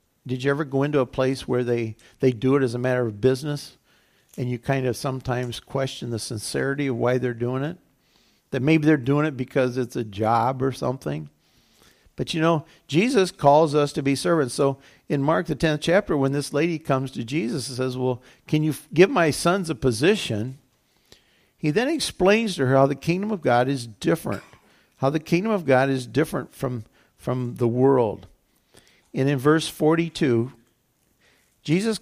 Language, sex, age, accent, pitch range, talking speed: English, male, 50-69, American, 125-155 Hz, 185 wpm